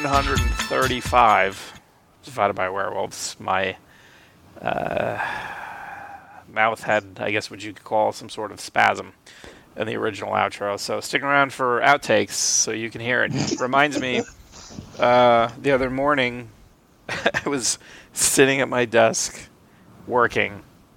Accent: American